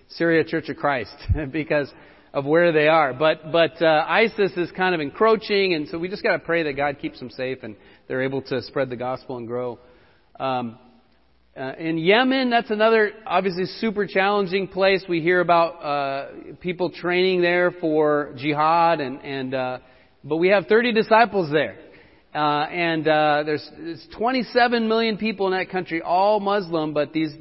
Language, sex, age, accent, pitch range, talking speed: English, male, 40-59, American, 145-195 Hz, 175 wpm